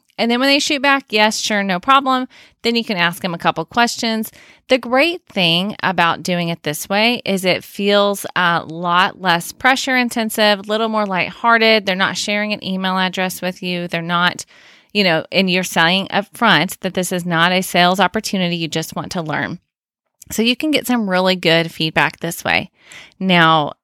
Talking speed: 195 wpm